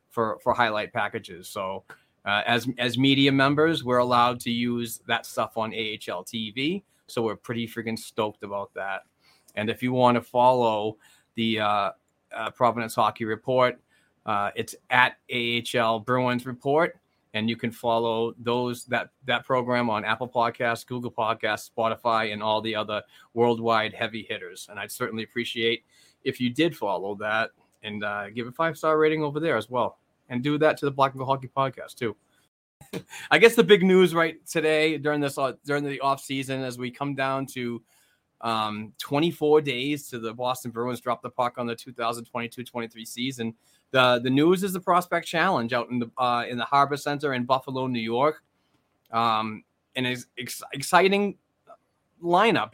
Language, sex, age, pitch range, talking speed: English, male, 30-49, 115-140 Hz, 175 wpm